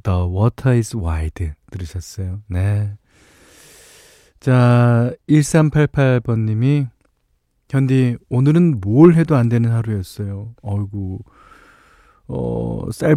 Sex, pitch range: male, 100-140 Hz